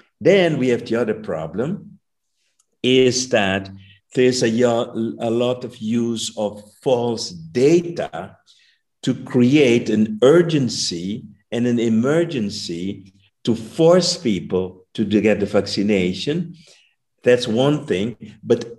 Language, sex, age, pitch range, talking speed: German, male, 50-69, 110-155 Hz, 110 wpm